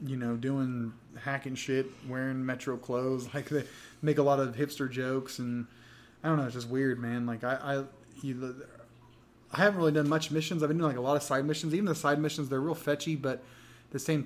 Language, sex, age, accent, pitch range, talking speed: English, male, 20-39, American, 130-155 Hz, 225 wpm